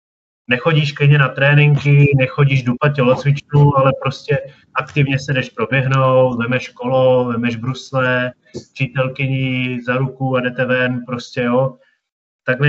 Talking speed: 125 wpm